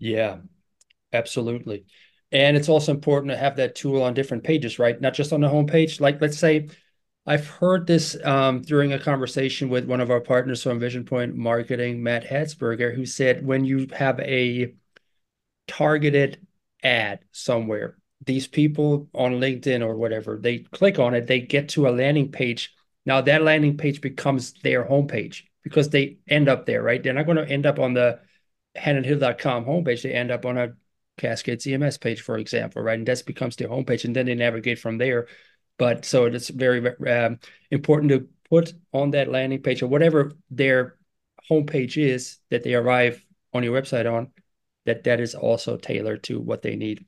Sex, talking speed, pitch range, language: male, 180 wpm, 120-145 Hz, English